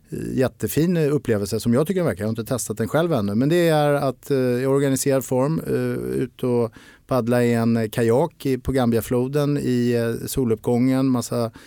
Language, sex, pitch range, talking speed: Swedish, male, 110-130 Hz, 160 wpm